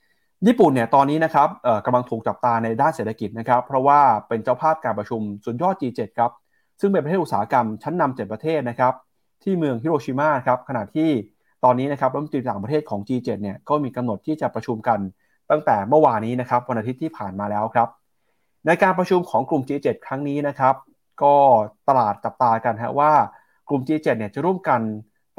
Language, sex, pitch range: Thai, male, 115-150 Hz